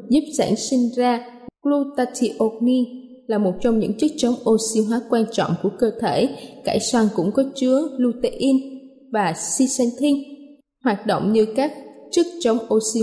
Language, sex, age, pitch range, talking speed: Vietnamese, female, 20-39, 220-265 Hz, 150 wpm